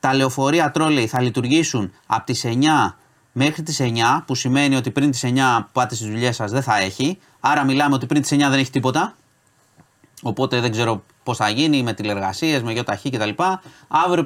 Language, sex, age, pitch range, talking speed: Greek, male, 30-49, 110-140 Hz, 195 wpm